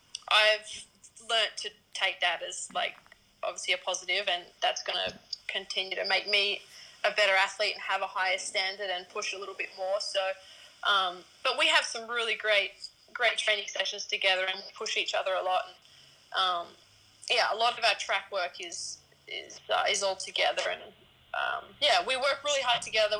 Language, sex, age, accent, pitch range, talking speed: English, female, 20-39, Australian, 190-225 Hz, 190 wpm